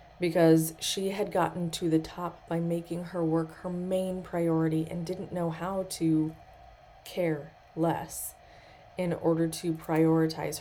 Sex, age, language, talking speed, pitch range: female, 20-39, English, 140 wpm, 160-185 Hz